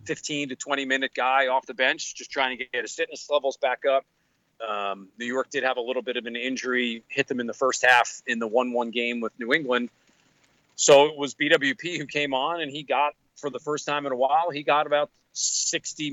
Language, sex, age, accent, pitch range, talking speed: English, male, 40-59, American, 125-150 Hz, 235 wpm